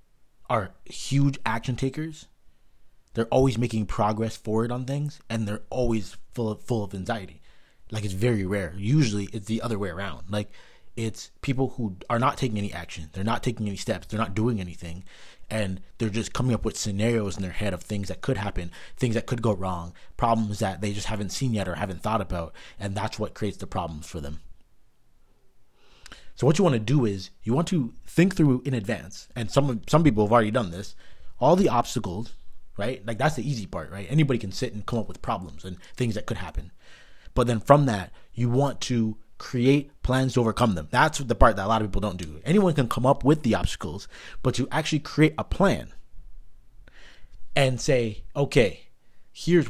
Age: 30-49